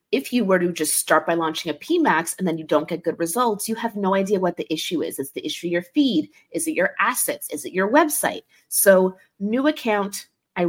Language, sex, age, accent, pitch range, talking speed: English, female, 30-49, American, 165-215 Hz, 240 wpm